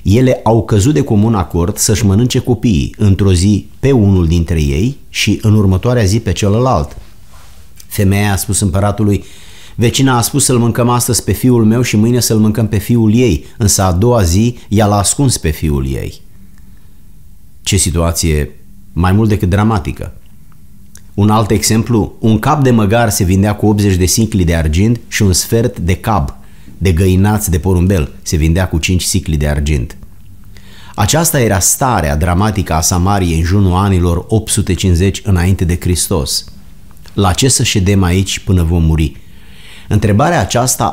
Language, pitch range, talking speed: Romanian, 90-110 Hz, 160 wpm